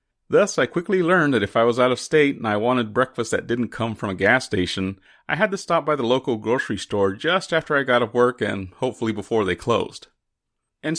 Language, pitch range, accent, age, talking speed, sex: English, 105-150 Hz, American, 40-59, 235 wpm, male